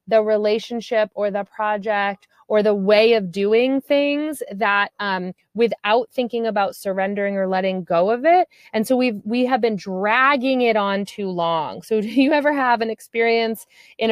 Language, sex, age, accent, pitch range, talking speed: English, female, 30-49, American, 195-235 Hz, 175 wpm